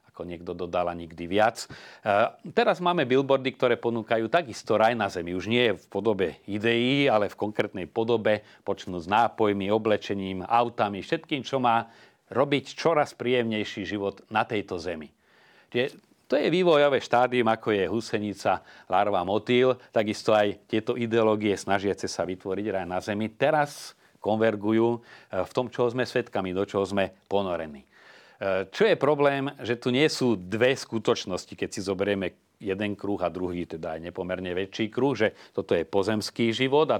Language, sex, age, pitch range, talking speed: Slovak, male, 40-59, 100-120 Hz, 155 wpm